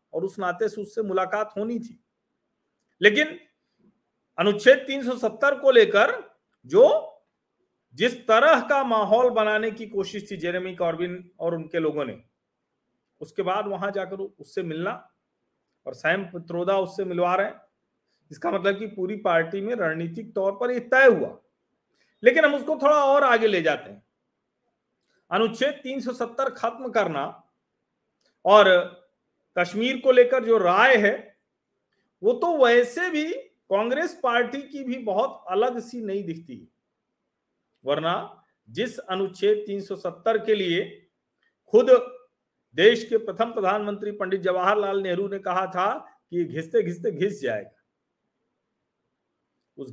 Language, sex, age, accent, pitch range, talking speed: Hindi, male, 40-59, native, 185-255 Hz, 125 wpm